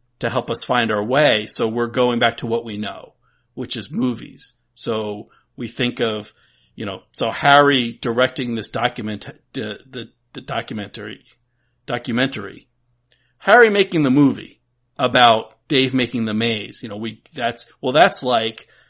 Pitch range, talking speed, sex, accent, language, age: 115-135 Hz, 155 wpm, male, American, English, 50-69